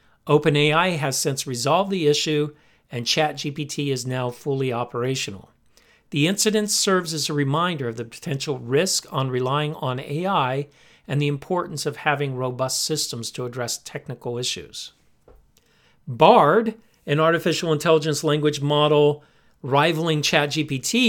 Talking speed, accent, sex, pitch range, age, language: 130 wpm, American, male, 130-170 Hz, 50-69, English